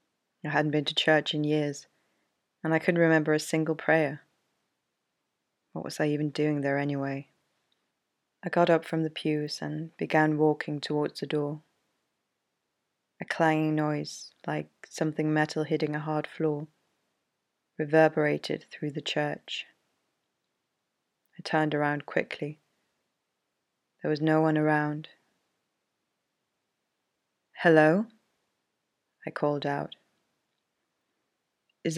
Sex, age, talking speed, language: female, 20-39, 115 wpm, English